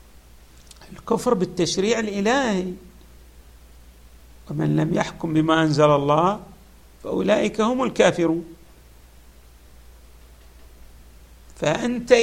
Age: 50-69